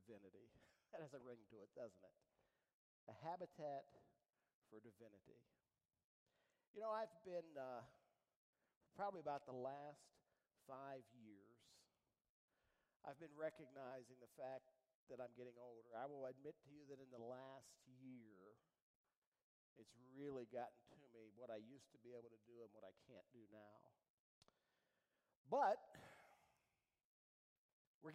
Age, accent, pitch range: 50-69, American, 115-155 Hz